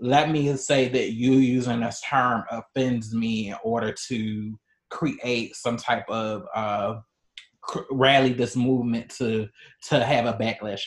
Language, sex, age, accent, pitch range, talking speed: English, male, 30-49, American, 120-150 Hz, 145 wpm